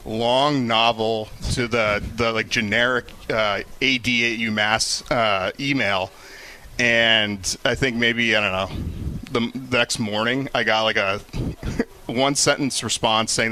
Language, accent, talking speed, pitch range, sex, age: English, American, 140 wpm, 105-125 Hz, male, 30-49